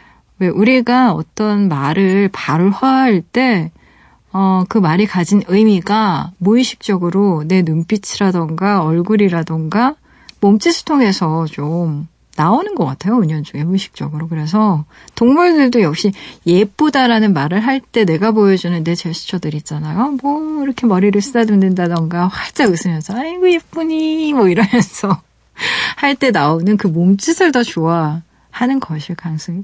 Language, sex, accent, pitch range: Korean, female, native, 170-235 Hz